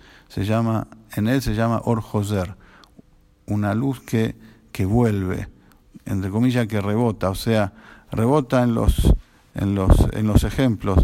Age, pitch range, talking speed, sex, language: 50-69, 100-120 Hz, 140 wpm, male, English